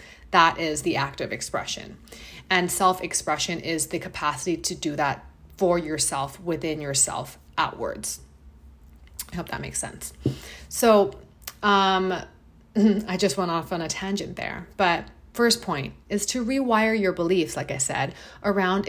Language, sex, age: English, female, 30-49